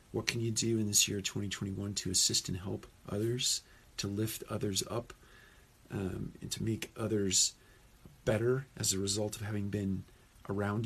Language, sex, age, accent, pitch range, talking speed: English, male, 40-59, American, 95-115 Hz, 165 wpm